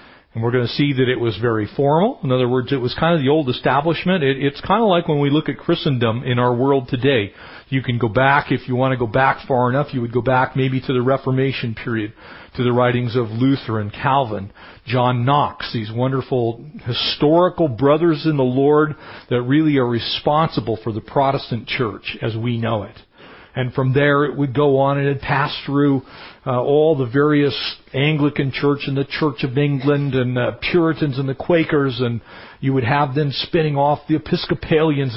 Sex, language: male, English